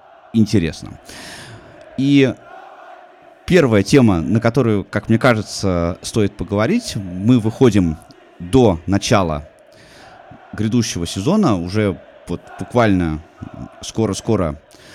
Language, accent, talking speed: Russian, native, 75 wpm